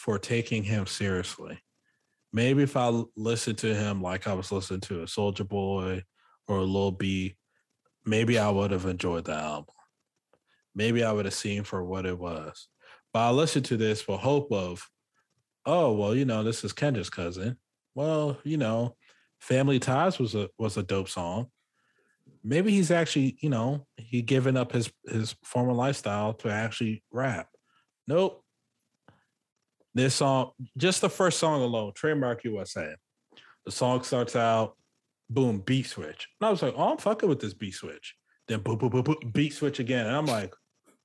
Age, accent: 20-39, American